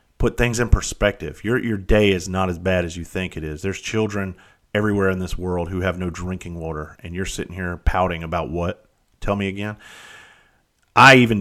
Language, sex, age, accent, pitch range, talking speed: English, male, 30-49, American, 85-105 Hz, 205 wpm